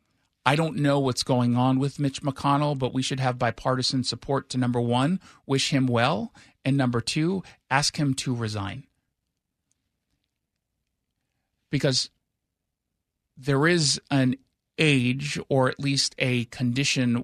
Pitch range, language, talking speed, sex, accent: 130-155 Hz, English, 130 wpm, male, American